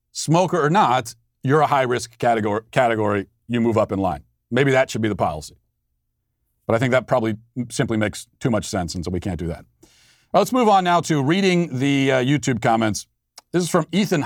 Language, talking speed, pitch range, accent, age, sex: English, 215 wpm, 105-145 Hz, American, 40-59, male